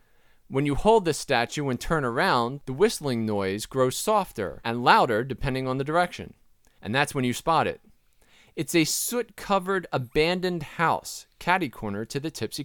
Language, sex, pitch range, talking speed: English, male, 115-170 Hz, 170 wpm